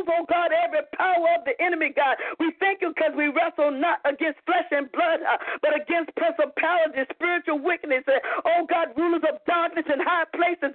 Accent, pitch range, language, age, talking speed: American, 310-350 Hz, English, 50-69, 195 wpm